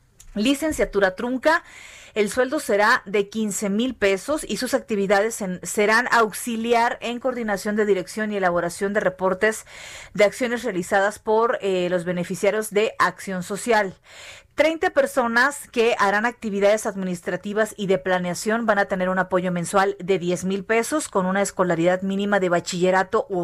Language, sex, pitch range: Spanish, female, 195-235 Hz